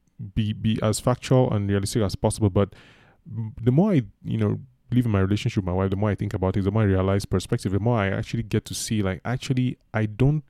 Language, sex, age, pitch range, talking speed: English, male, 20-39, 100-120 Hz, 245 wpm